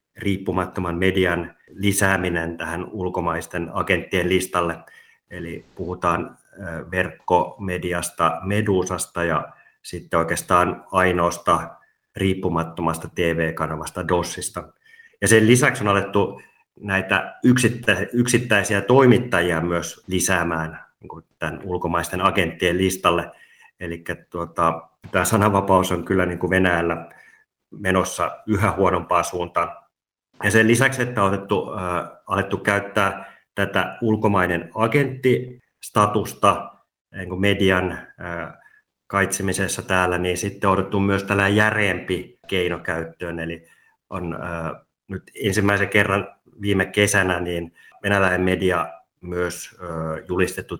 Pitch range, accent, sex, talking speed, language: 85-100 Hz, native, male, 100 wpm, Finnish